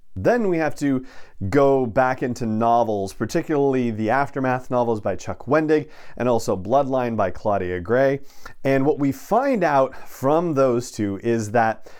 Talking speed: 155 wpm